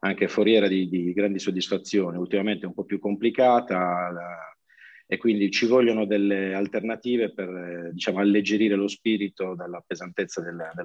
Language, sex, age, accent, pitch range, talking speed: Italian, male, 40-59, native, 90-110 Hz, 155 wpm